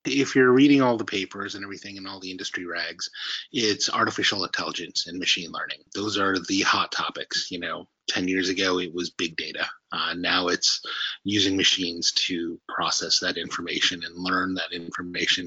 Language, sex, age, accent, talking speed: English, male, 30-49, American, 180 wpm